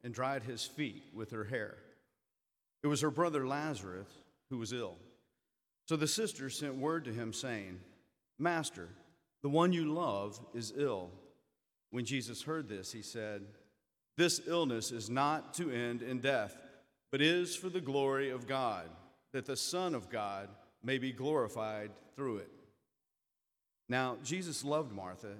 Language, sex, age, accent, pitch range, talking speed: English, male, 40-59, American, 115-150 Hz, 155 wpm